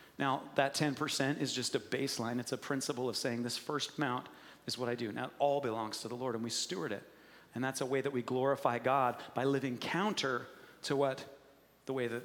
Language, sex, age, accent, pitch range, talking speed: English, male, 40-59, American, 120-140 Hz, 225 wpm